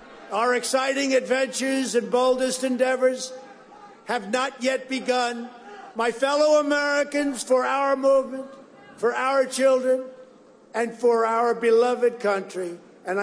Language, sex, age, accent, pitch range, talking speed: English, male, 50-69, American, 215-255 Hz, 115 wpm